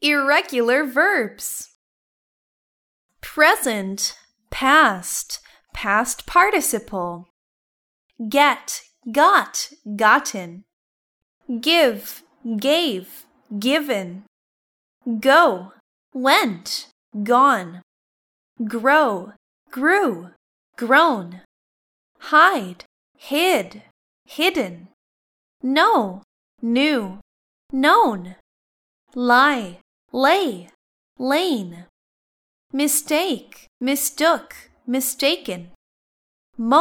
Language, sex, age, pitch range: Thai, female, 10-29, 210-300 Hz